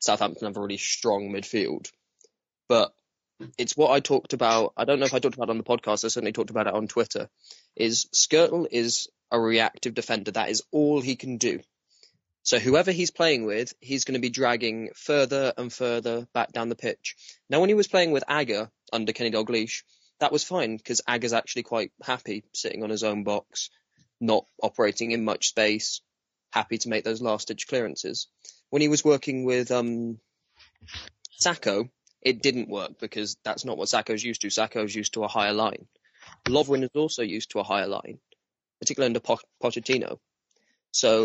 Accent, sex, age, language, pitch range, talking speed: British, male, 20-39, English, 110-130 Hz, 190 wpm